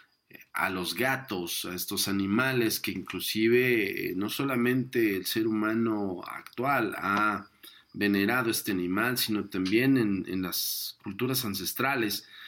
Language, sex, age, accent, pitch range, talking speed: Spanish, male, 50-69, Mexican, 95-115 Hz, 120 wpm